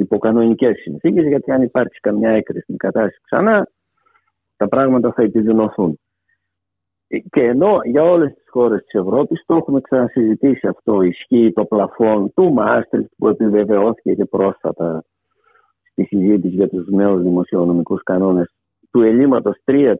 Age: 50-69